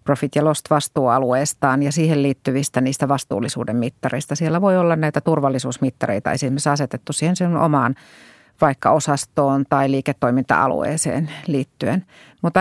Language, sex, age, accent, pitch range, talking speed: Finnish, female, 30-49, native, 135-160 Hz, 125 wpm